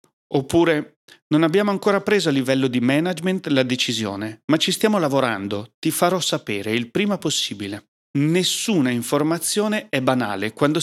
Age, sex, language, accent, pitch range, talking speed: 40-59, male, Italian, native, 115-160 Hz, 145 wpm